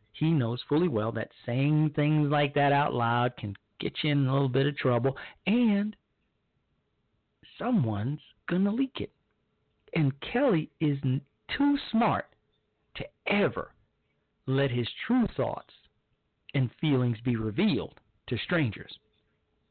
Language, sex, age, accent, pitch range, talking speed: English, male, 40-59, American, 115-150 Hz, 130 wpm